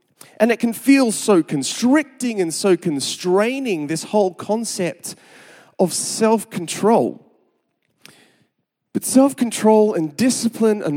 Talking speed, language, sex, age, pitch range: 105 wpm, English, male, 30-49, 150-215 Hz